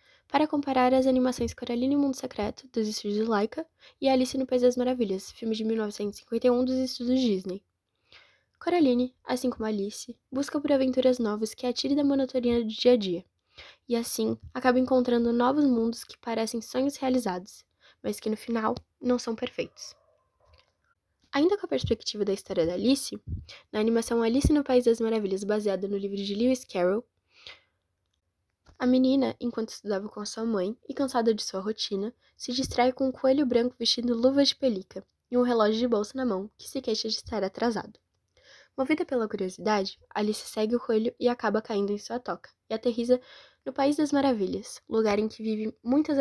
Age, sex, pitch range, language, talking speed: 10-29, female, 215-260 Hz, Portuguese, 180 wpm